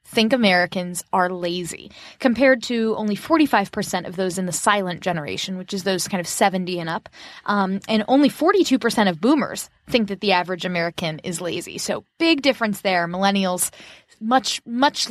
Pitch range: 185-245 Hz